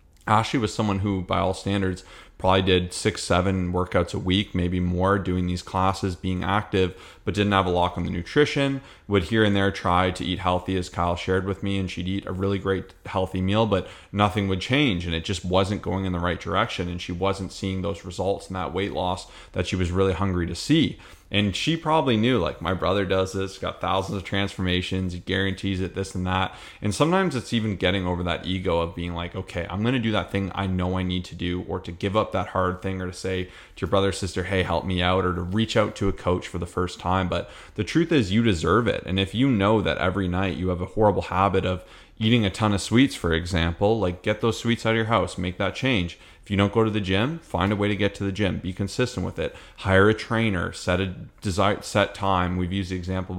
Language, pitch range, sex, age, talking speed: English, 90-100 Hz, male, 30-49, 245 wpm